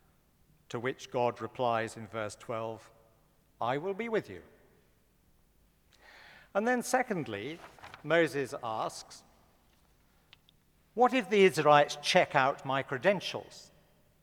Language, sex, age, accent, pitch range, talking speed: English, male, 60-79, British, 120-175 Hz, 100 wpm